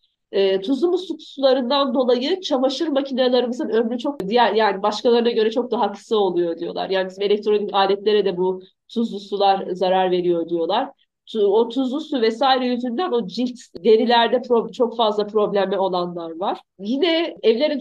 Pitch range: 195-255 Hz